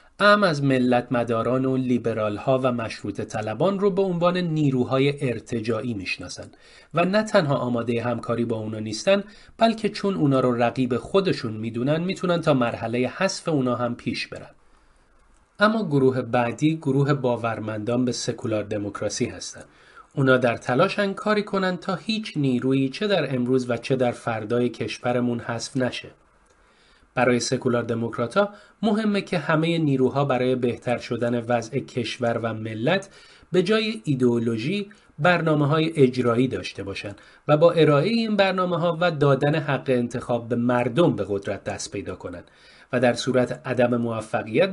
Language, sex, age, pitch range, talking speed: Persian, male, 30-49, 120-175 Hz, 145 wpm